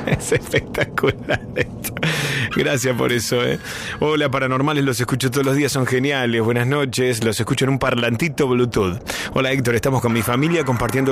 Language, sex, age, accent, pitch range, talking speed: Spanish, male, 20-39, Argentinian, 105-135 Hz, 165 wpm